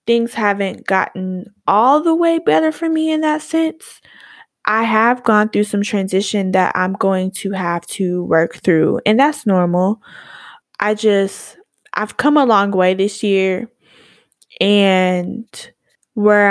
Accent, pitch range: American, 185-230 Hz